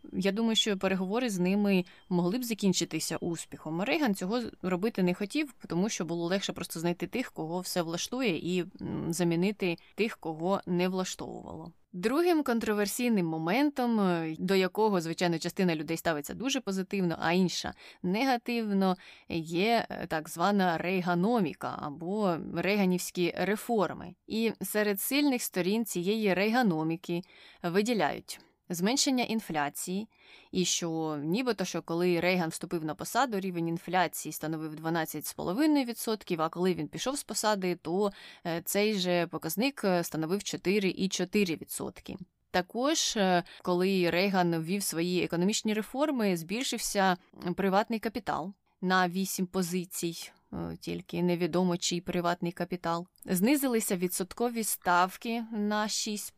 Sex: female